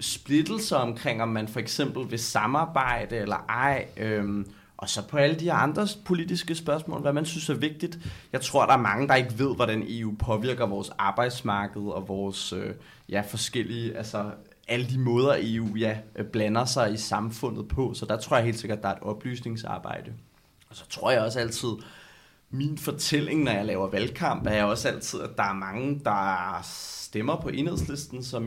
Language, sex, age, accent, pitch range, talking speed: Danish, male, 20-39, native, 105-130 Hz, 175 wpm